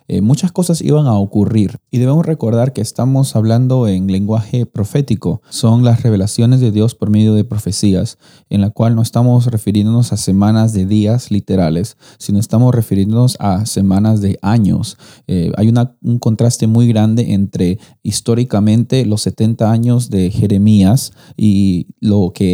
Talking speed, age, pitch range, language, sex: 155 wpm, 30-49, 100-120 Hz, Spanish, male